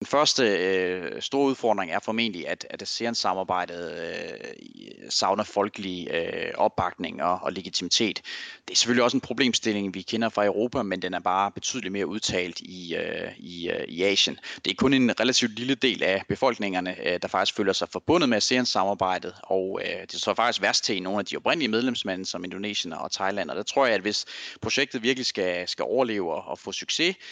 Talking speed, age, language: 195 wpm, 30-49, Danish